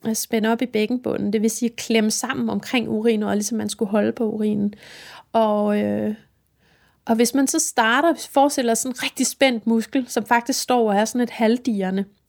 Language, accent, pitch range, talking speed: Danish, native, 215-260 Hz, 205 wpm